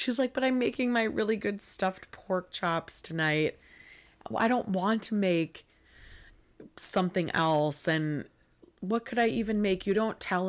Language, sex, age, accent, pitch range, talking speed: English, female, 30-49, American, 145-185 Hz, 160 wpm